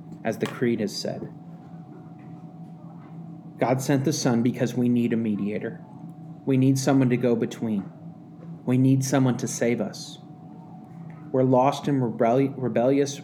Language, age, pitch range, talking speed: English, 30-49, 125-165 Hz, 140 wpm